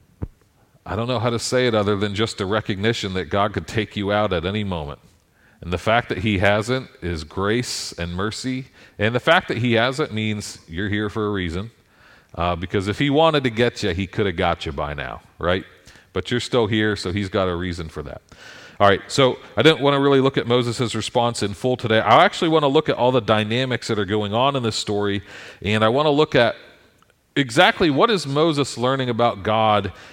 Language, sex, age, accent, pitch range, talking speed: English, male, 40-59, American, 100-135 Hz, 225 wpm